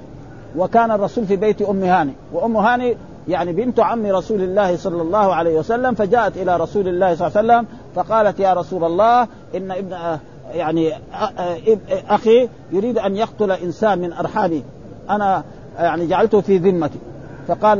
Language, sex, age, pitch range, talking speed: Arabic, male, 50-69, 170-220 Hz, 150 wpm